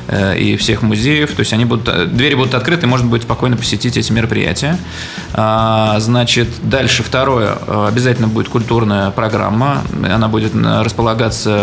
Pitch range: 105-125 Hz